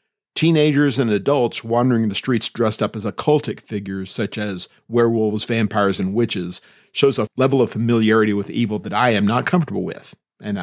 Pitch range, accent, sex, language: 105-135 Hz, American, male, English